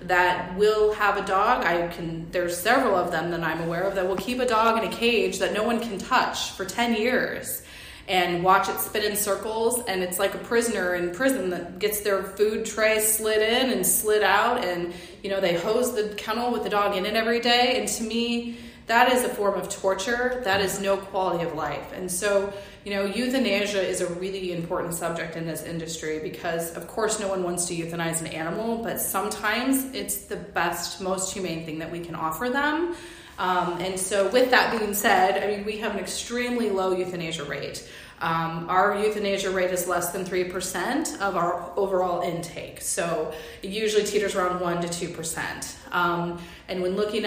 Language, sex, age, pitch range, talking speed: English, female, 20-39, 170-210 Hz, 200 wpm